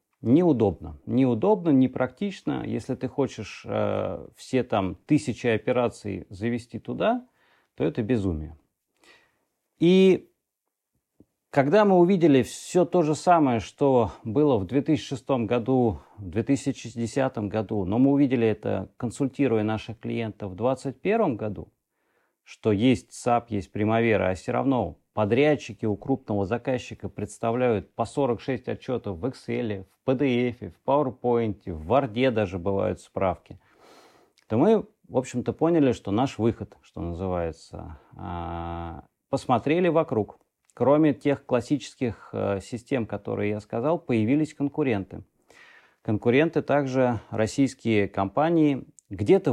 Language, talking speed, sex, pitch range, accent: Russian, 115 wpm, male, 105-140 Hz, native